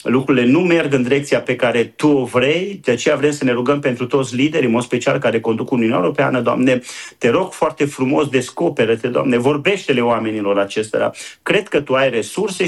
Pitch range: 115-145 Hz